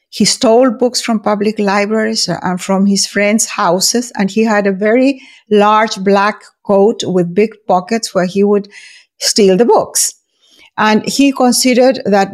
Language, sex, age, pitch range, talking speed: English, female, 50-69, 185-225 Hz, 155 wpm